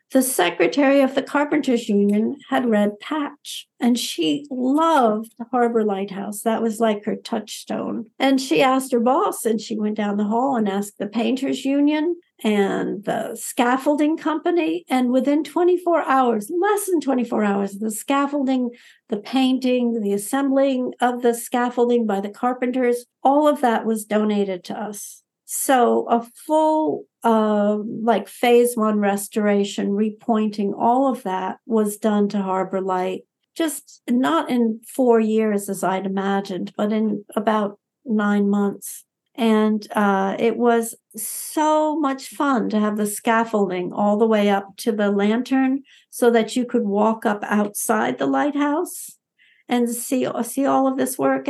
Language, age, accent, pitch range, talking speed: English, 60-79, American, 210-265 Hz, 155 wpm